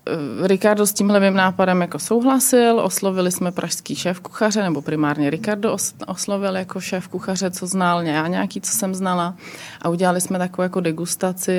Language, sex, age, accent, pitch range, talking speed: Czech, female, 30-49, native, 165-200 Hz, 165 wpm